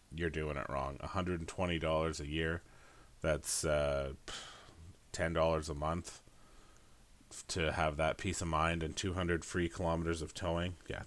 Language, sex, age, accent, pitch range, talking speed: English, male, 30-49, American, 80-95 Hz, 135 wpm